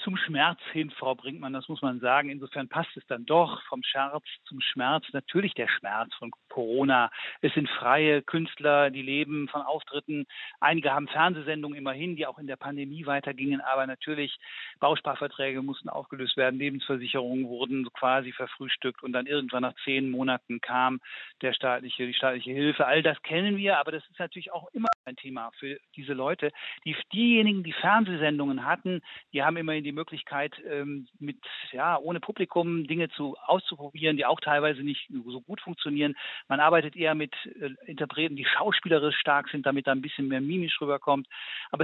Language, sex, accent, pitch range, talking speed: German, male, German, 135-160 Hz, 170 wpm